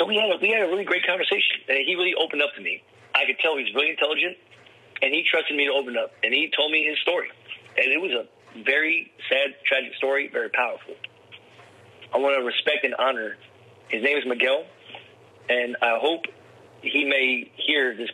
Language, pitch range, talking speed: English, 130-155 Hz, 210 wpm